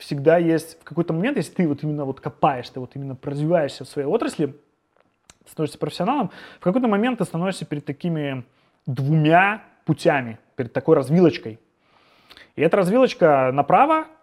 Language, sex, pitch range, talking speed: Russian, male, 130-180 Hz, 150 wpm